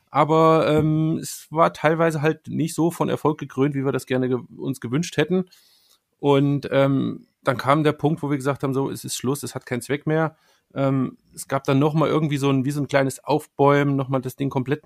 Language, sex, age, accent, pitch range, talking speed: German, male, 40-59, German, 130-150 Hz, 220 wpm